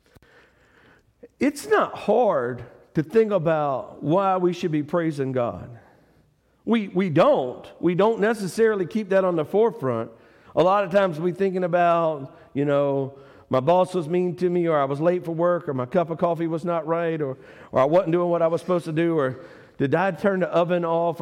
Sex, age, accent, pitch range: male, 50-69, American, 160-215 Hz